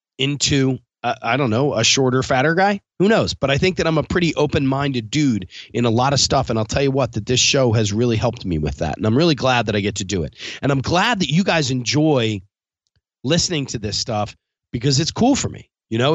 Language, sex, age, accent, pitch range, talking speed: English, male, 30-49, American, 115-150 Hz, 255 wpm